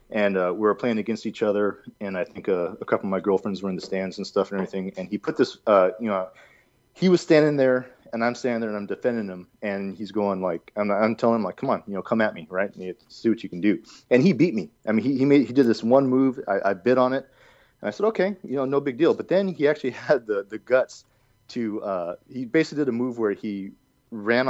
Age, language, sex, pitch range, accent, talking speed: 30-49, English, male, 105-130 Hz, American, 275 wpm